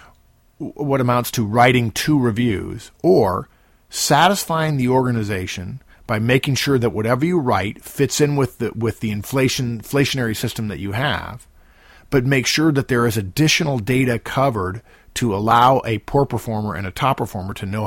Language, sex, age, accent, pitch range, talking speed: English, male, 50-69, American, 105-130 Hz, 165 wpm